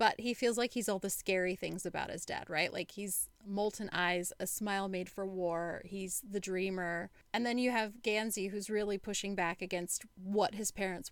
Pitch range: 185-220 Hz